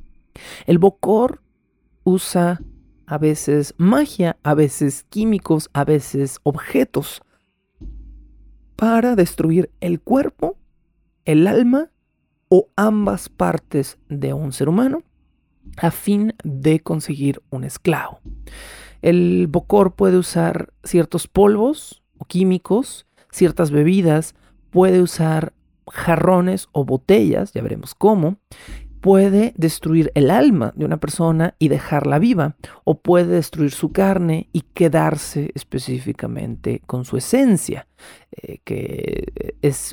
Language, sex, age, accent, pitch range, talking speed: Spanish, male, 40-59, Mexican, 140-185 Hz, 110 wpm